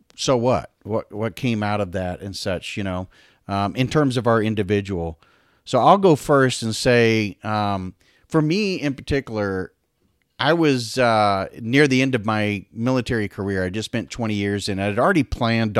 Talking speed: 185 wpm